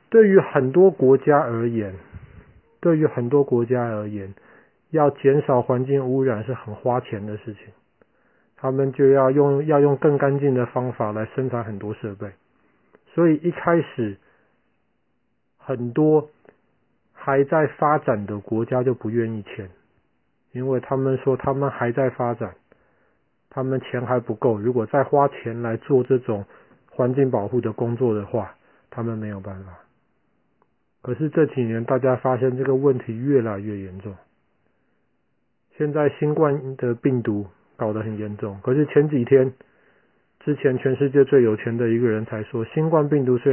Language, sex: Chinese, male